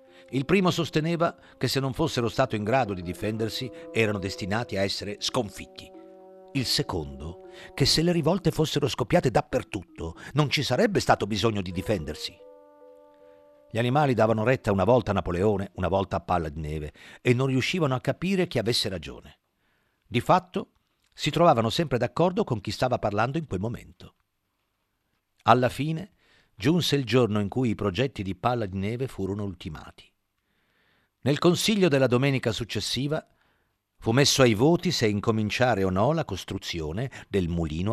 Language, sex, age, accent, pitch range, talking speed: Italian, male, 50-69, native, 95-135 Hz, 160 wpm